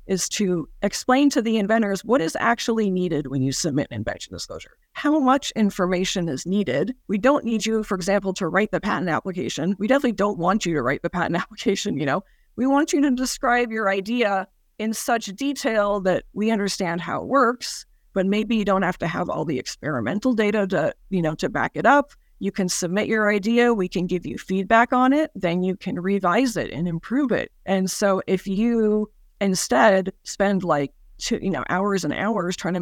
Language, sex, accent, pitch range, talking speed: English, female, American, 185-225 Hz, 205 wpm